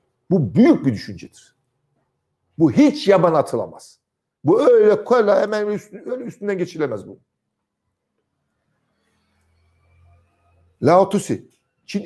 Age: 60-79